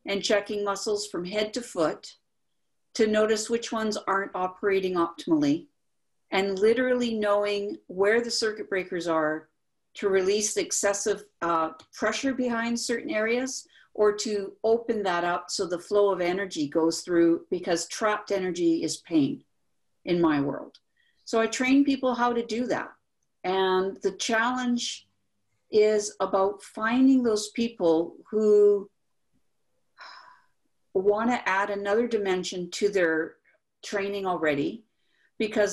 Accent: American